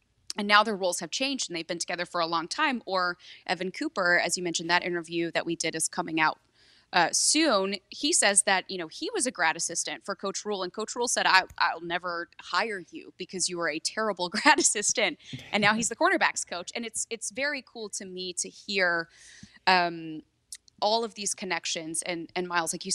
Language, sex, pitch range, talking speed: English, female, 165-205 Hz, 220 wpm